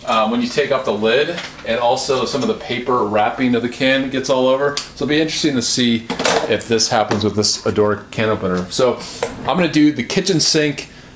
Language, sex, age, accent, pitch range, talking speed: English, male, 30-49, American, 110-135 Hz, 220 wpm